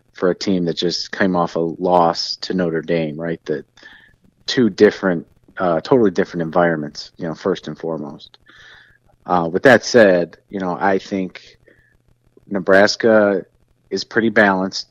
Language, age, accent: English, 30-49, American